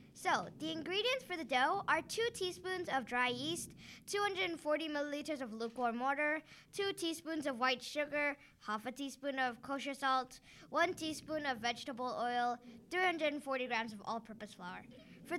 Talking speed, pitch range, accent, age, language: 150 wpm, 255-360 Hz, American, 10-29, English